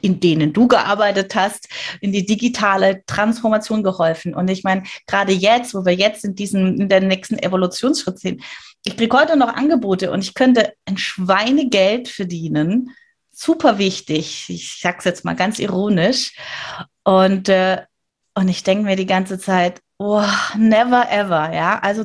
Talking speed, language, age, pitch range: 160 wpm, German, 30-49, 185-225 Hz